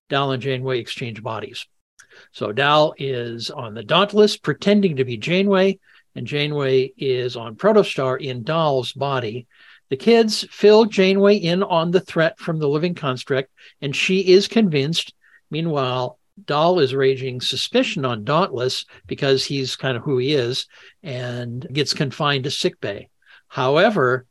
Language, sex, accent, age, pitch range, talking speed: English, male, American, 60-79, 130-175 Hz, 145 wpm